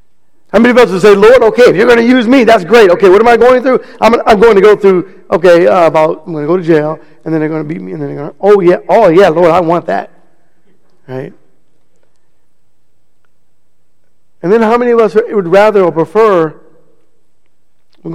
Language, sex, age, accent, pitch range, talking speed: English, male, 50-69, American, 165-195 Hz, 225 wpm